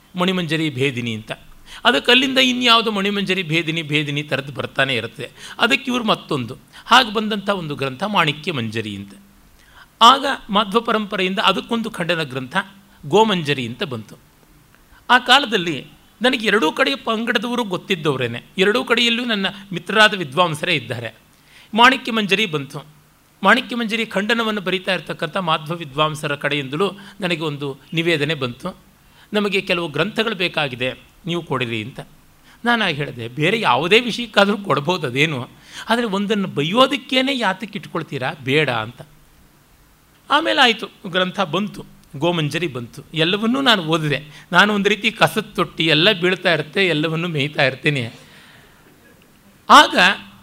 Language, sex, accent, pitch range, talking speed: Kannada, male, native, 150-220 Hz, 115 wpm